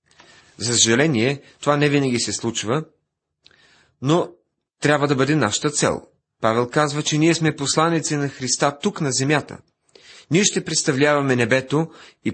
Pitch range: 110-150 Hz